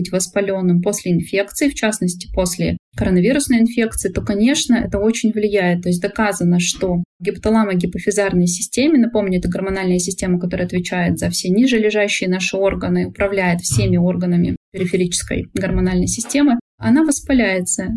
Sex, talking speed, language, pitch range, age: female, 135 wpm, Russian, 185-220 Hz, 20-39